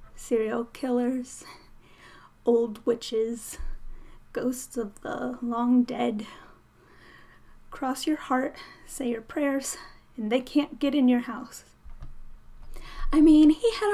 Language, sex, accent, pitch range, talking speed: English, female, American, 235-300 Hz, 110 wpm